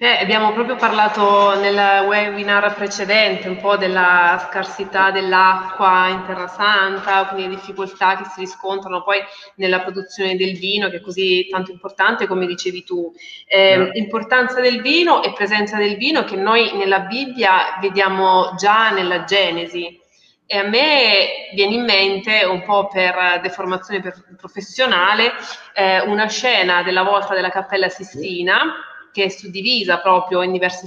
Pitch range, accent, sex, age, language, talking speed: 185-220 Hz, native, female, 20-39, Italian, 145 wpm